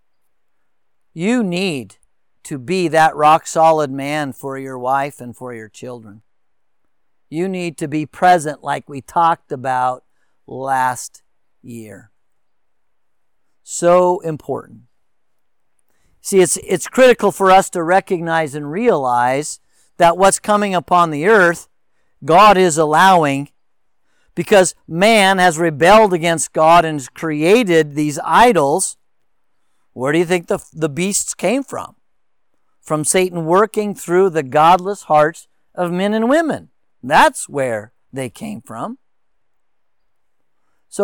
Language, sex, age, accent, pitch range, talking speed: English, male, 50-69, American, 145-185 Hz, 120 wpm